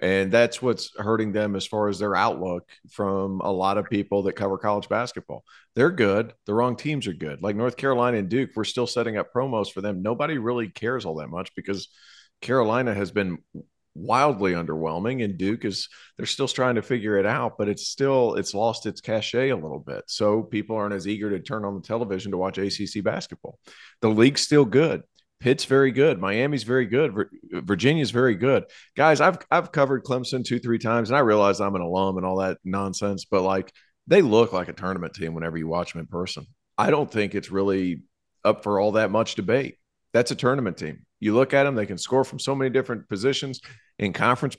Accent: American